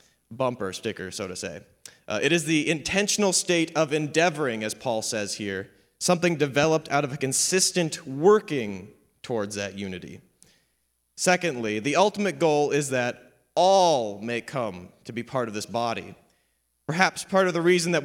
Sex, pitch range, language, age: male, 110-165 Hz, English, 30-49